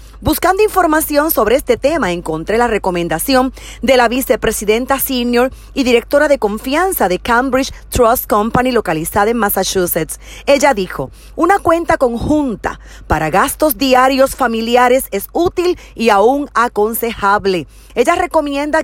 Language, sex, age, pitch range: Spanish, female, 40-59, 215-280 Hz